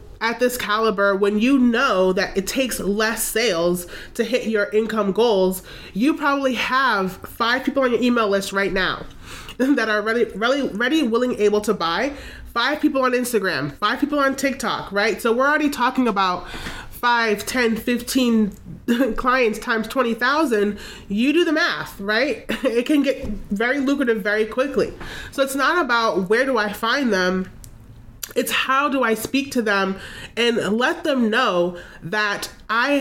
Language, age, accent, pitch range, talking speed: English, 30-49, American, 210-265 Hz, 165 wpm